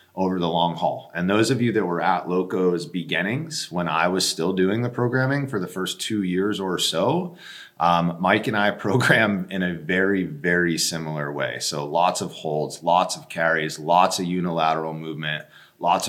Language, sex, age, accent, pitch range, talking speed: English, male, 30-49, American, 80-100 Hz, 185 wpm